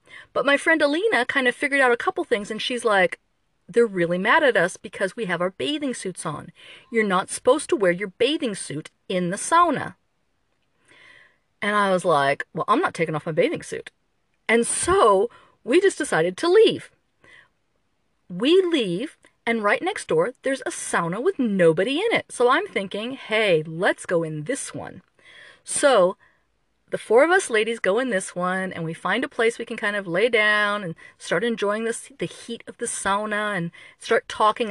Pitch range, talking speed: 180-255 Hz, 190 wpm